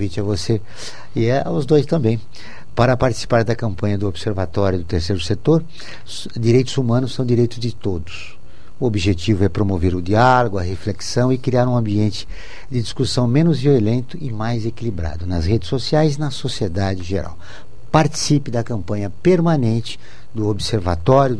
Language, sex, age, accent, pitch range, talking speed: Portuguese, male, 60-79, Brazilian, 100-135 Hz, 155 wpm